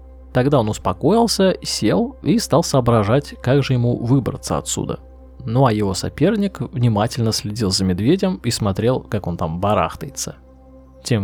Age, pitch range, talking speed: 20-39, 105-145 Hz, 145 wpm